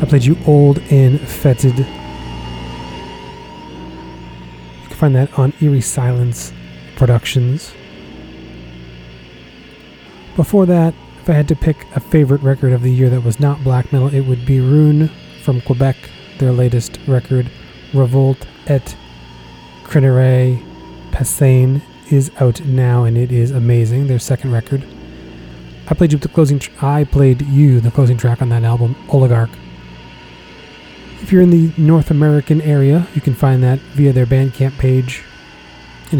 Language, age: English, 30-49